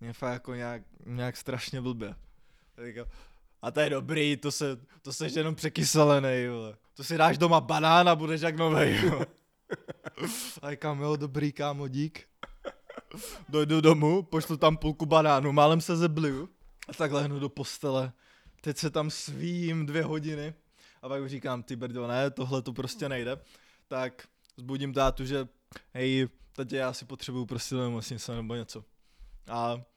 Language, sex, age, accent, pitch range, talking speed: Czech, male, 20-39, native, 125-160 Hz, 160 wpm